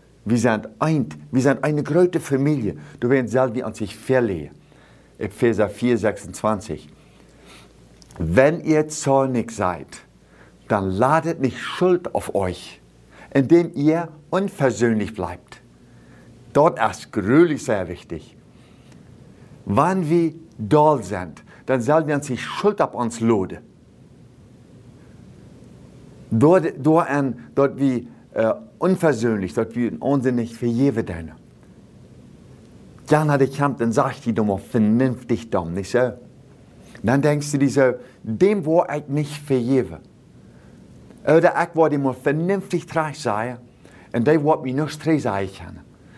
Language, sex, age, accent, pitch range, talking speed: German, male, 50-69, German, 110-150 Hz, 135 wpm